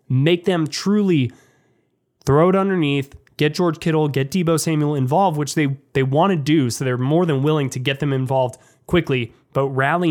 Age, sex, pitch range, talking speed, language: 20-39, male, 130-160 Hz, 185 wpm, English